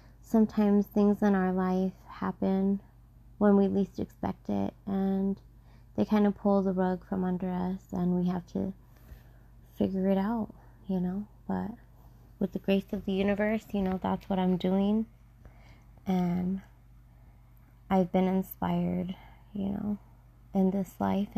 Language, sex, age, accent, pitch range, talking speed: English, female, 20-39, American, 125-200 Hz, 145 wpm